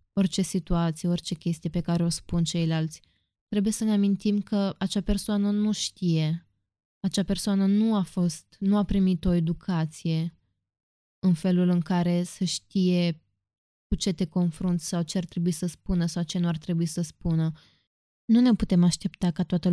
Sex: female